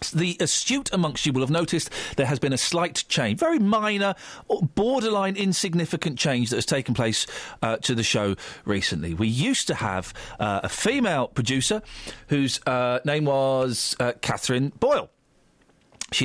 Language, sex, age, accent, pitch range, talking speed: English, male, 40-59, British, 105-155 Hz, 160 wpm